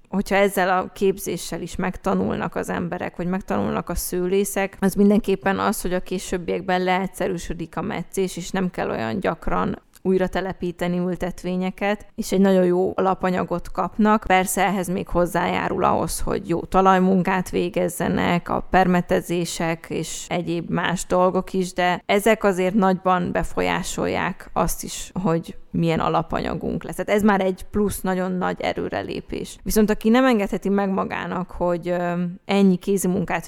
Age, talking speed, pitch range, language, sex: 20-39, 140 wpm, 175-195 Hz, Hungarian, female